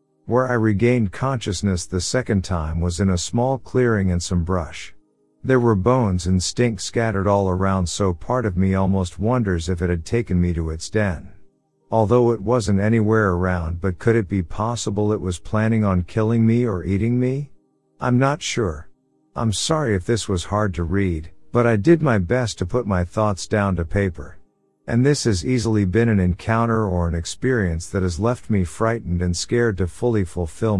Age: 50-69